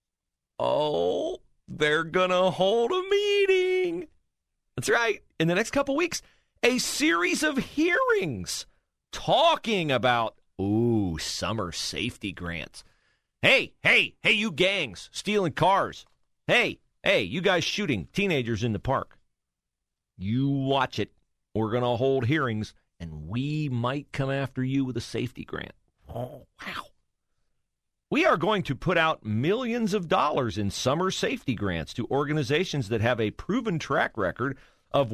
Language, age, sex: English, 40-59, male